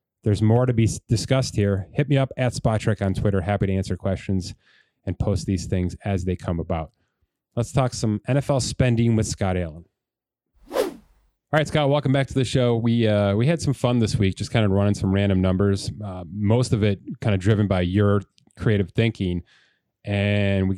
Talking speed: 200 wpm